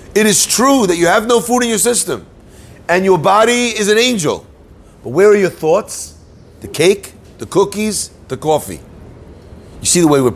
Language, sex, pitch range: English, male, 115-170 Hz